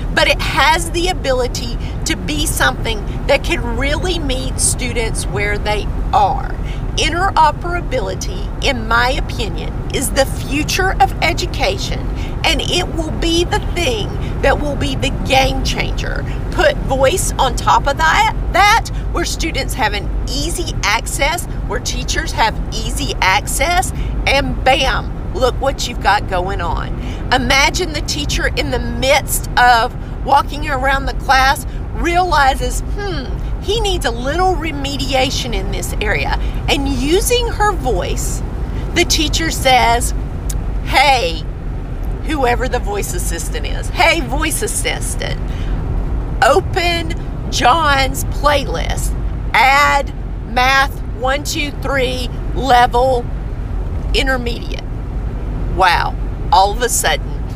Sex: female